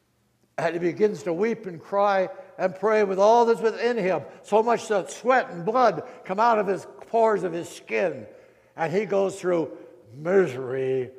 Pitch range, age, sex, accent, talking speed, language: 125-205 Hz, 60-79, male, American, 175 wpm, English